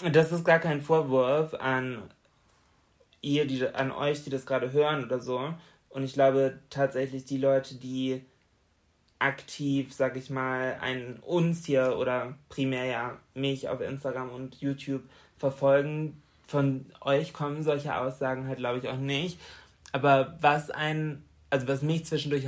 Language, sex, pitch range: German, male, 130-160 Hz